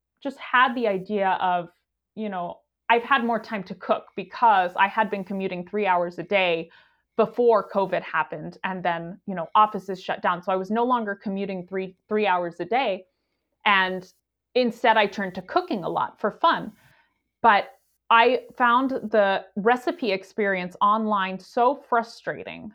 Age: 20-39